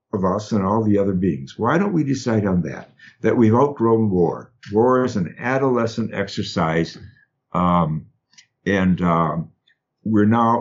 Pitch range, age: 100-135 Hz, 60-79